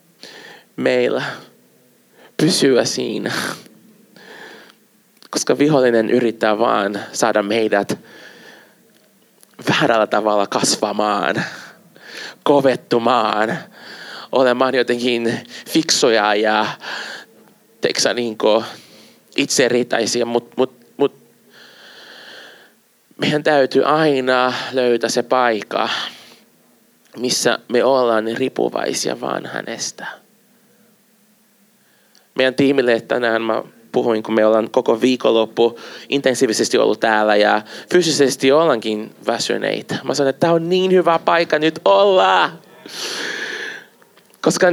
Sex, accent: male, native